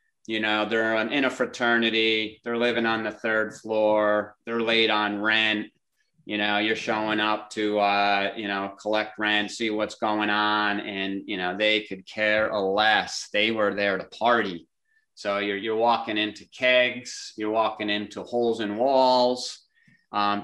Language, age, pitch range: English, 30-49, 105-120 Hz